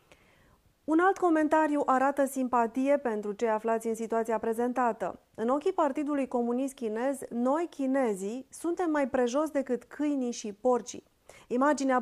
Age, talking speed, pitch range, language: 30-49, 130 wpm, 225-285 Hz, Romanian